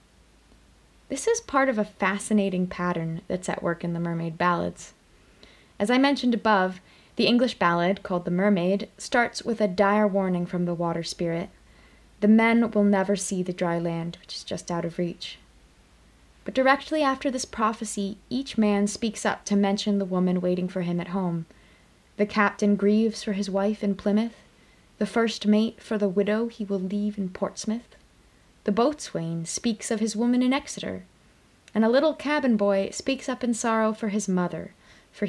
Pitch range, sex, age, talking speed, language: 185-220 Hz, female, 20-39, 180 wpm, English